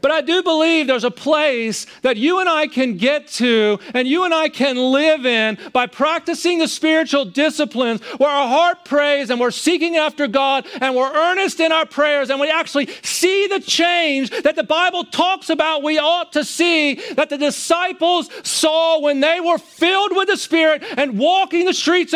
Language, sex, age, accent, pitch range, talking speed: English, male, 40-59, American, 285-345 Hz, 190 wpm